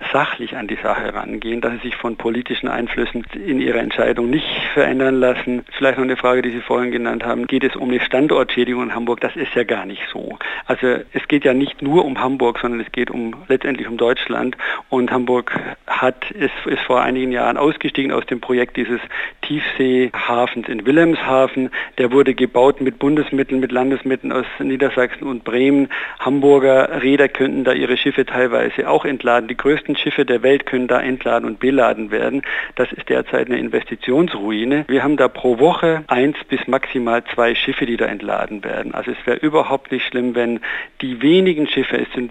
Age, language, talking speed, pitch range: 50-69, German, 185 wpm, 120-135 Hz